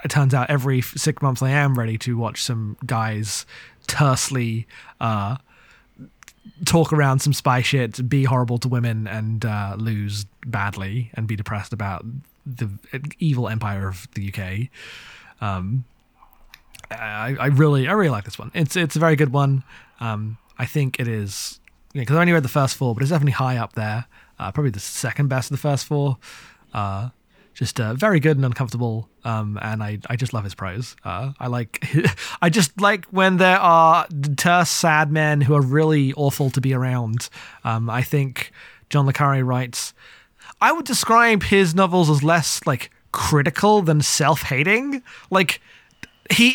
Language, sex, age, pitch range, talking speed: English, male, 20-39, 115-150 Hz, 175 wpm